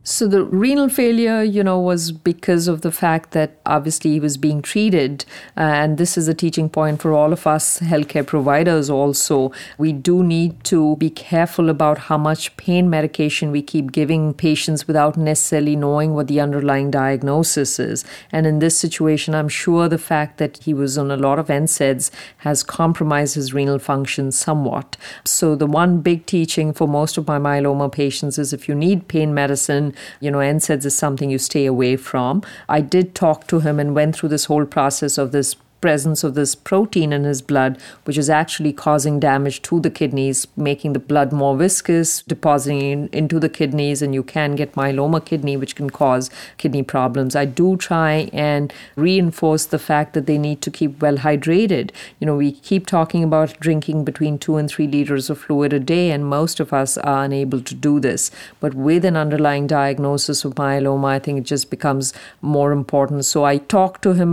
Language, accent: English, Indian